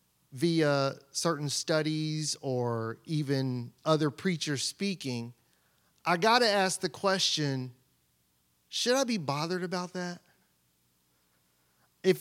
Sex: male